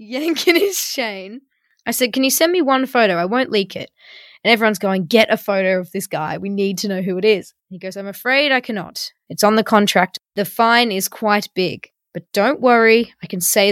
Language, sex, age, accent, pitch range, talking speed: English, female, 20-39, Australian, 185-235 Hz, 225 wpm